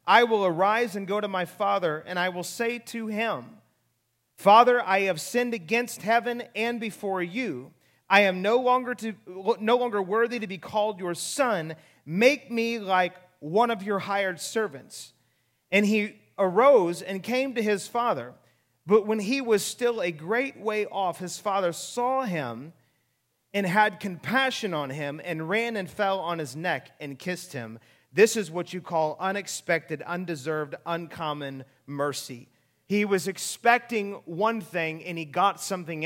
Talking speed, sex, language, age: 165 wpm, male, English, 30-49